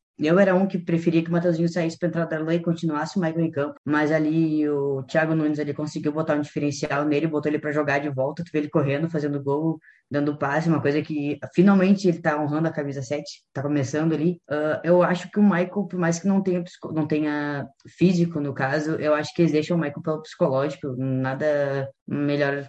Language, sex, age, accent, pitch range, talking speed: Portuguese, female, 10-29, Brazilian, 145-170 Hz, 220 wpm